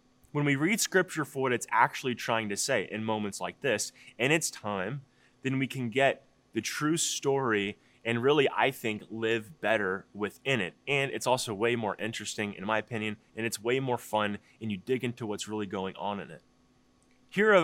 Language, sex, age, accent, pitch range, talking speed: English, male, 20-39, American, 105-130 Hz, 195 wpm